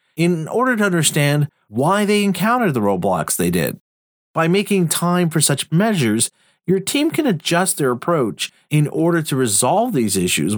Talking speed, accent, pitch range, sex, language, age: 165 wpm, American, 115-170 Hz, male, English, 40-59